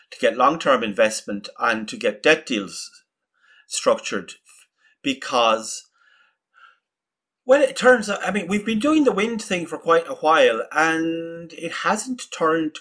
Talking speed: 150 wpm